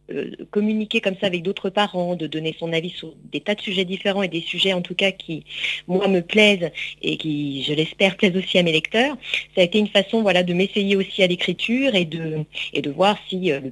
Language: French